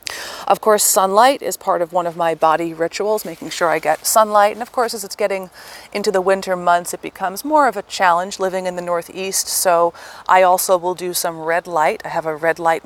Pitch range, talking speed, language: 150-185 Hz, 230 wpm, English